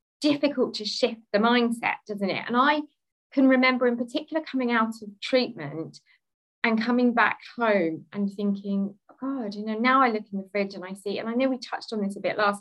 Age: 20-39